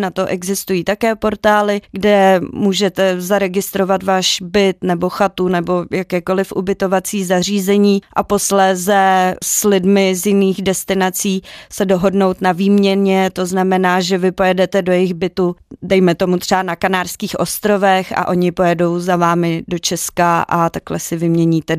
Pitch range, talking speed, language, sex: 180-210 Hz, 145 wpm, Czech, female